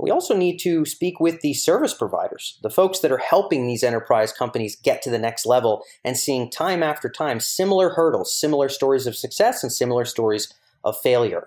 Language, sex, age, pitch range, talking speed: English, male, 30-49, 115-165 Hz, 200 wpm